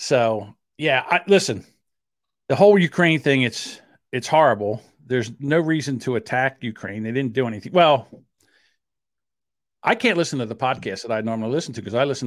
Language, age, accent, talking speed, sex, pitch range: English, 50-69, American, 175 wpm, male, 125-155 Hz